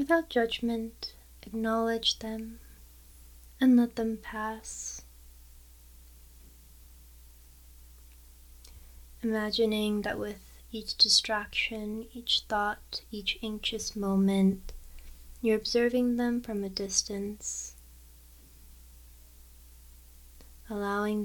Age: 20-39